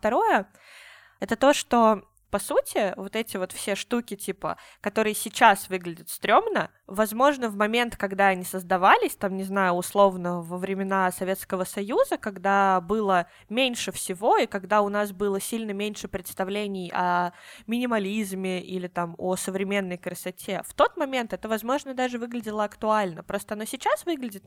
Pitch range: 185-220 Hz